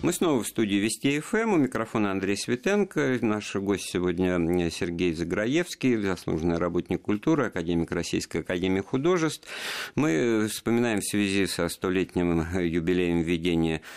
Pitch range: 85-110 Hz